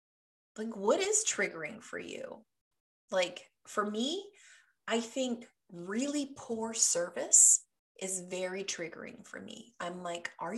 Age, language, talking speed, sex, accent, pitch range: 30-49, English, 125 wpm, female, American, 175-245 Hz